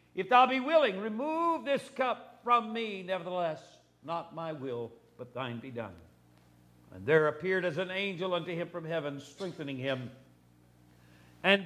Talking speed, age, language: 155 wpm, 60-79, English